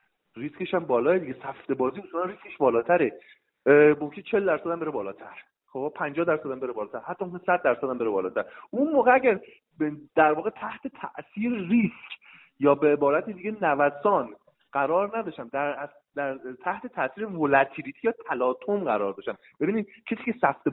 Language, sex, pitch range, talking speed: Persian, male, 135-220 Hz, 160 wpm